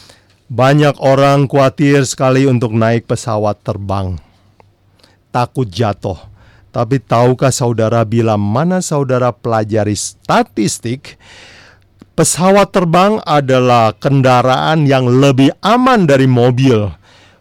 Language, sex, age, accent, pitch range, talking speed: Indonesian, male, 50-69, native, 110-150 Hz, 95 wpm